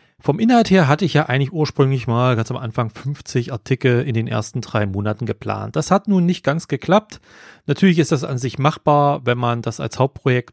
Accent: German